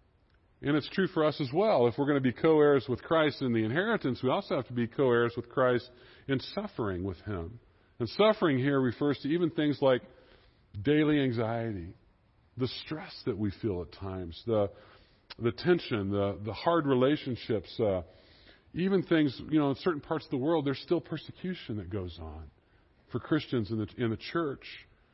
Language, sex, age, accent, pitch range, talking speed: English, female, 50-69, American, 110-155 Hz, 185 wpm